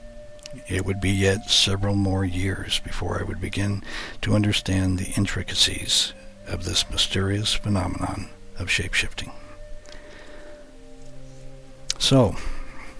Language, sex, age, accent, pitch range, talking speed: English, male, 60-79, American, 90-105 Hz, 100 wpm